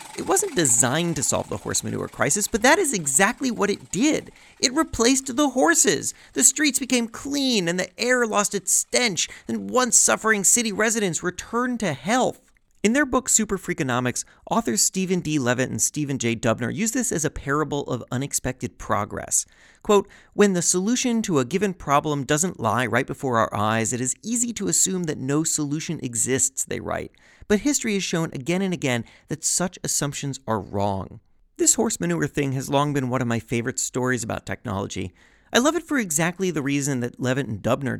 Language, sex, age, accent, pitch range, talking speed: English, male, 30-49, American, 130-210 Hz, 190 wpm